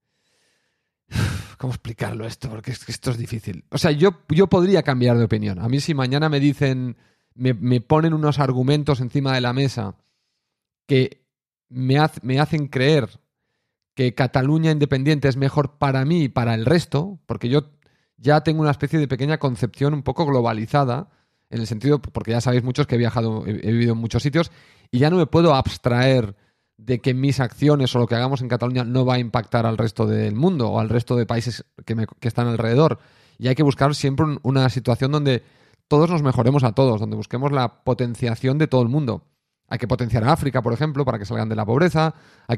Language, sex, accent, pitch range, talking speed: Spanish, male, Spanish, 115-145 Hz, 205 wpm